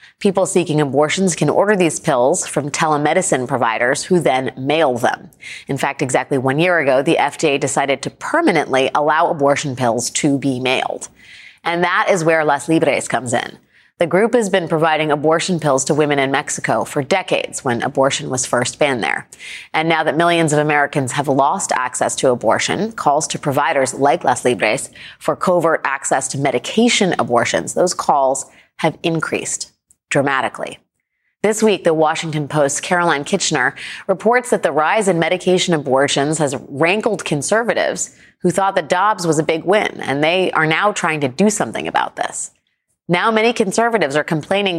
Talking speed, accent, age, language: 170 wpm, American, 30-49, English